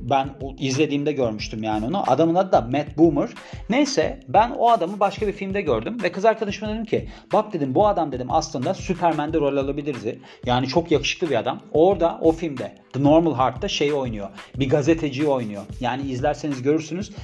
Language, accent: Turkish, native